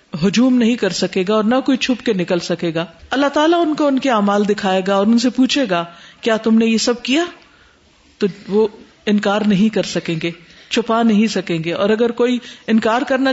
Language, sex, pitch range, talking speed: Urdu, female, 185-245 Hz, 220 wpm